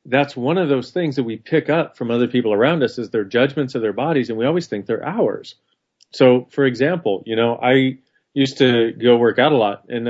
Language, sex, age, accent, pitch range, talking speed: English, male, 40-59, American, 115-140 Hz, 240 wpm